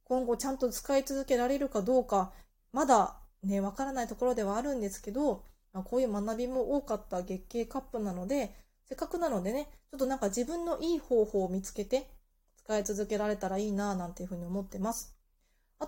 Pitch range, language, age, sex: 215-320 Hz, Japanese, 20-39, female